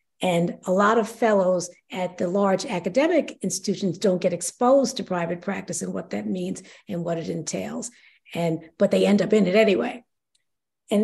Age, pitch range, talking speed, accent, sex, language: 50-69, 185-230 Hz, 180 wpm, American, female, English